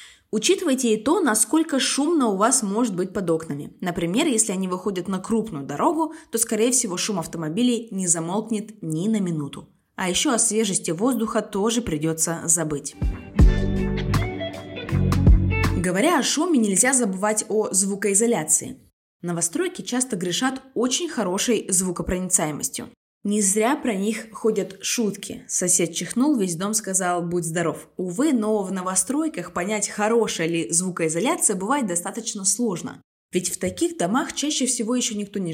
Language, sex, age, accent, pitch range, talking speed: Russian, female, 20-39, native, 180-235 Hz, 140 wpm